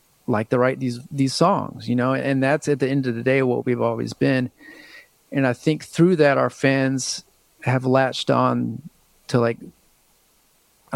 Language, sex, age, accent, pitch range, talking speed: English, male, 30-49, American, 120-140 Hz, 180 wpm